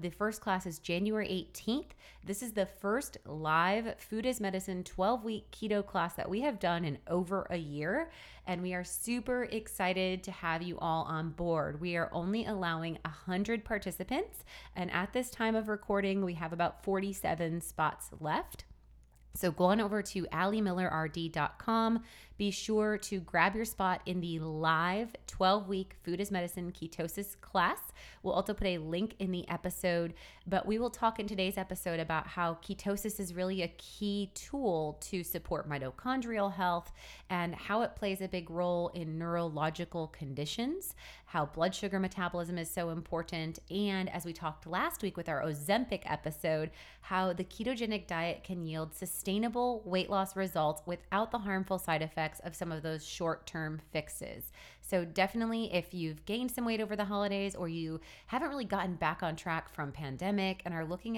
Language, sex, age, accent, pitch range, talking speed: English, female, 20-39, American, 165-200 Hz, 170 wpm